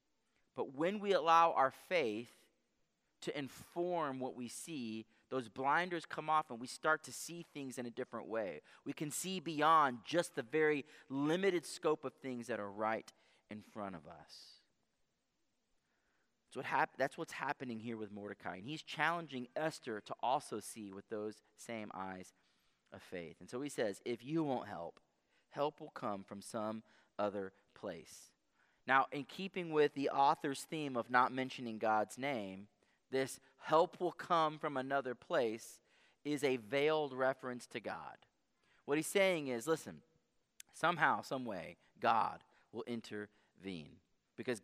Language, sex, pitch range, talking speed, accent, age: English, male, 115-155 Hz, 155 wpm, American, 30-49